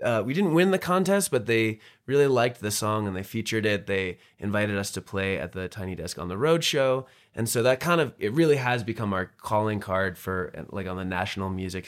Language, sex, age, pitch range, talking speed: English, male, 20-39, 95-110 Hz, 235 wpm